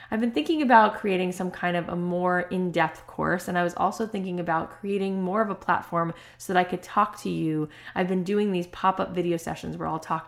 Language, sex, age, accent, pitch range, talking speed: English, female, 20-39, American, 165-195 Hz, 235 wpm